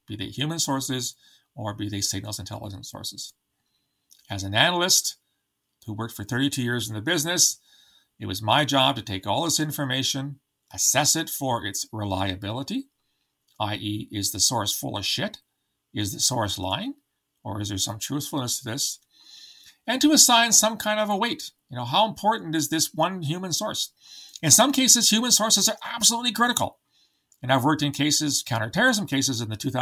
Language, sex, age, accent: English, male, 50-69, American